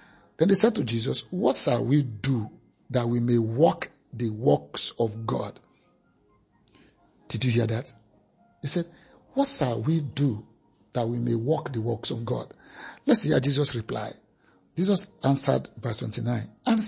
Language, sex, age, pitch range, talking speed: English, male, 50-69, 115-150 Hz, 165 wpm